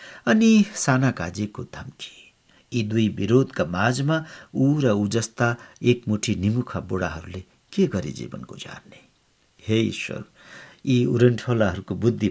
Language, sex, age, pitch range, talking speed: English, male, 60-79, 100-140 Hz, 130 wpm